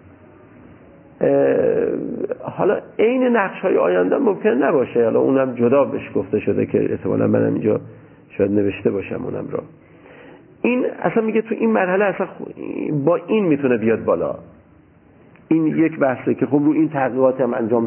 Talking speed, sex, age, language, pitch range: 145 wpm, male, 50-69, Persian, 115-175 Hz